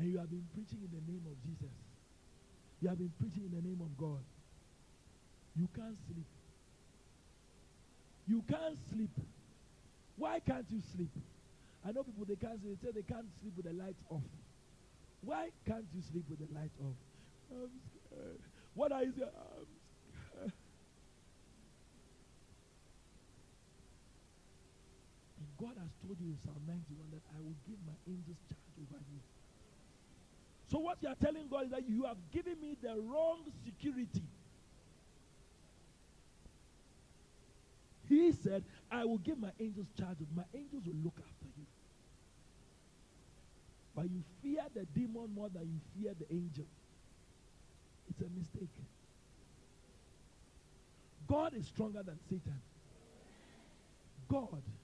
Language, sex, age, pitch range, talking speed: English, male, 50-69, 145-215 Hz, 135 wpm